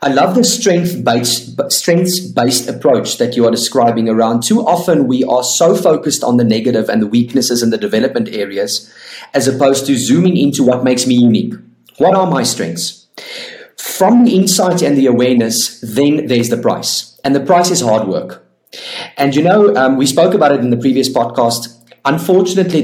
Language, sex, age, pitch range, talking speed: English, male, 30-49, 120-170 Hz, 185 wpm